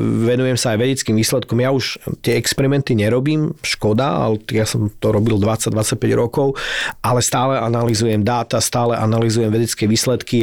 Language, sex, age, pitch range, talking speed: Slovak, male, 40-59, 110-125 Hz, 150 wpm